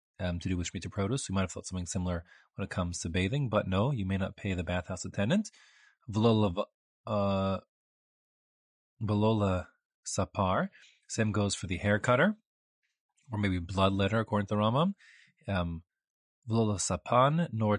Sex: male